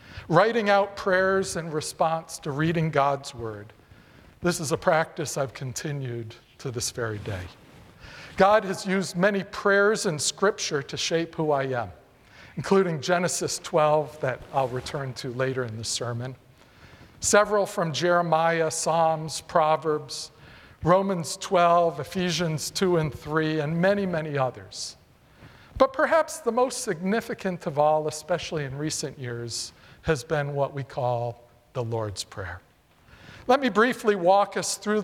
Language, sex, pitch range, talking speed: English, male, 130-190 Hz, 140 wpm